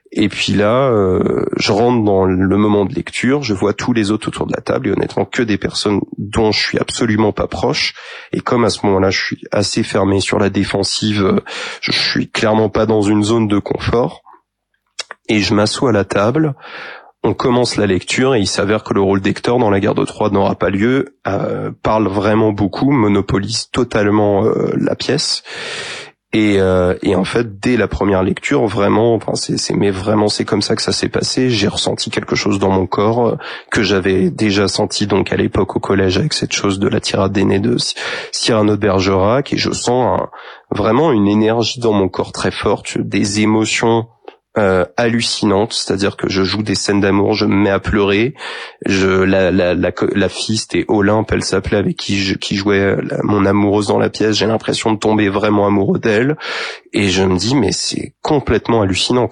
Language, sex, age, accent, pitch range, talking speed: French, male, 30-49, French, 100-110 Hz, 200 wpm